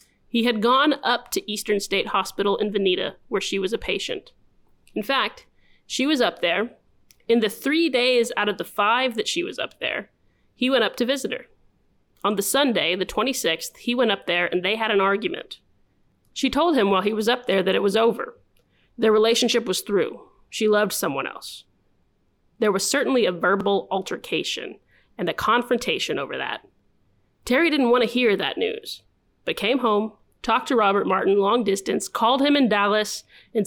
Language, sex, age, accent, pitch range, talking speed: English, female, 30-49, American, 200-250 Hz, 190 wpm